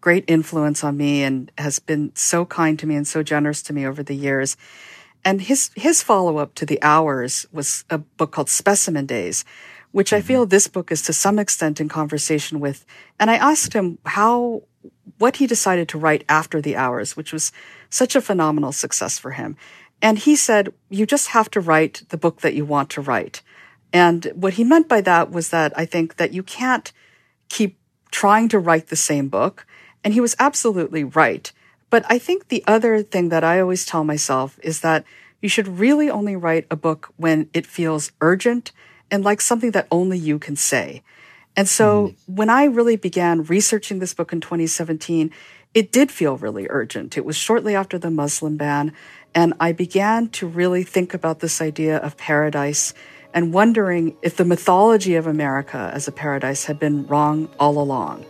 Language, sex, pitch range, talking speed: English, female, 150-205 Hz, 190 wpm